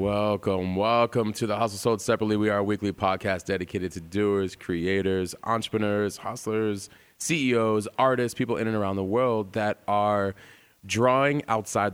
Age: 20-39